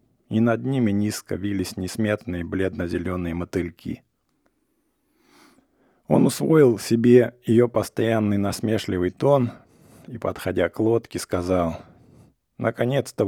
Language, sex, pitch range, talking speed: English, male, 95-125 Hz, 95 wpm